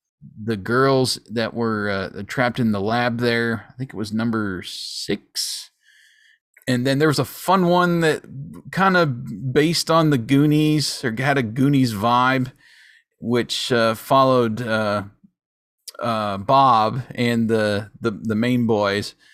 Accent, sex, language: American, male, English